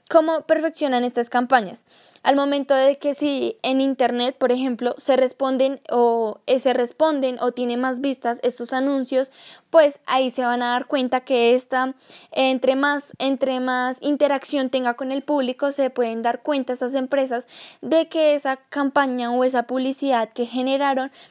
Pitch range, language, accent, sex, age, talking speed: 245-280 Hz, Spanish, Colombian, female, 10-29, 160 wpm